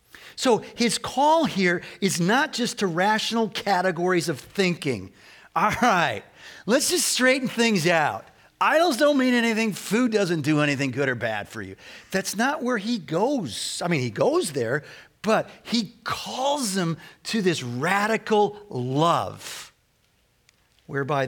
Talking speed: 145 wpm